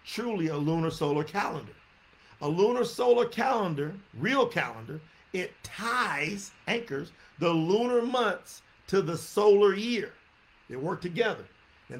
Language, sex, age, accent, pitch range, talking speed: English, male, 50-69, American, 160-230 Hz, 125 wpm